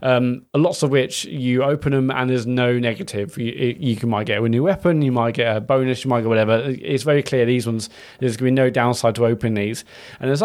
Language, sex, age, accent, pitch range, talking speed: English, male, 20-39, British, 115-135 Hz, 255 wpm